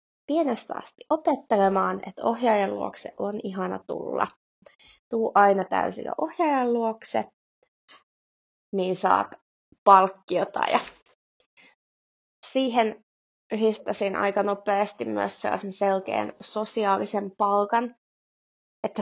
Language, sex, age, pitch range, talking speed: Finnish, female, 20-39, 195-240 Hz, 80 wpm